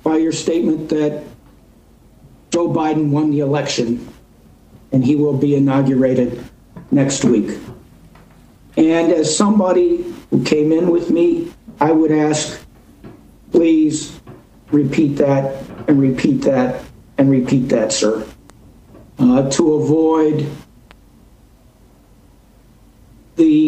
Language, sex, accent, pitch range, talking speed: English, male, American, 140-170 Hz, 105 wpm